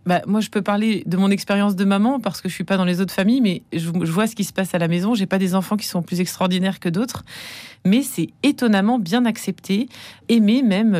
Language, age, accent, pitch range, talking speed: French, 30-49, French, 170-210 Hz, 260 wpm